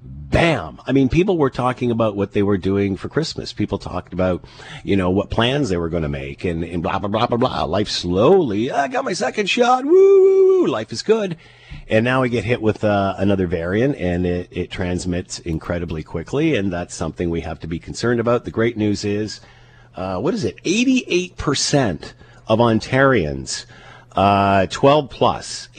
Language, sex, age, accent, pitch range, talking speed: English, male, 50-69, American, 90-115 Hz, 190 wpm